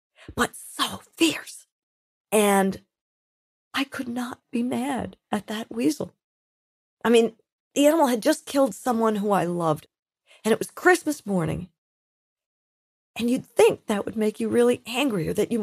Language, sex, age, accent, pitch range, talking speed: English, female, 40-59, American, 165-225 Hz, 155 wpm